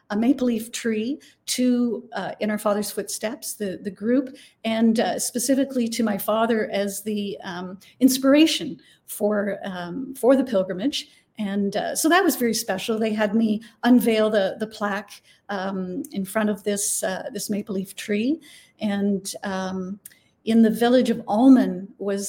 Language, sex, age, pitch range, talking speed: English, female, 50-69, 205-250 Hz, 160 wpm